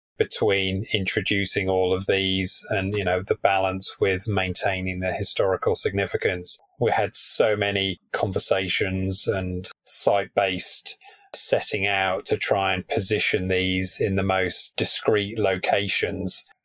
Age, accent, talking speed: 30-49, British, 125 wpm